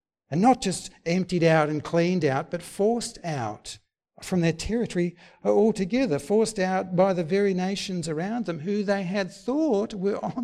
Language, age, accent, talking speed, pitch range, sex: English, 60-79, Australian, 165 wpm, 110-160 Hz, male